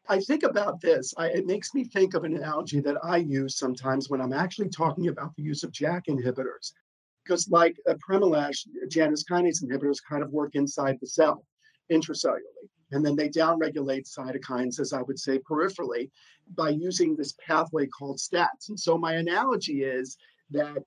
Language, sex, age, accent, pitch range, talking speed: English, male, 50-69, American, 145-175 Hz, 175 wpm